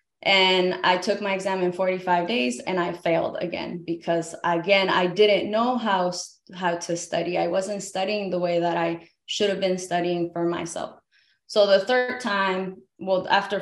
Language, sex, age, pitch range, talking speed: English, female, 20-39, 175-205 Hz, 175 wpm